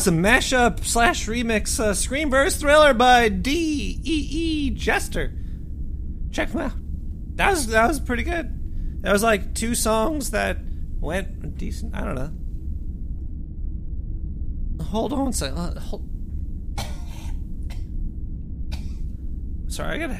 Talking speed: 120 wpm